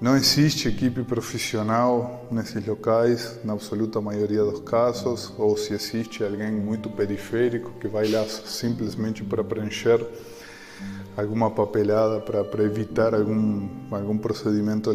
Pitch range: 105-120 Hz